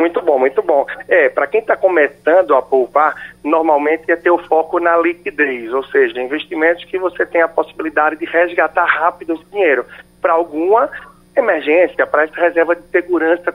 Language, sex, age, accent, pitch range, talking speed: Portuguese, male, 40-59, Brazilian, 145-195 Hz, 175 wpm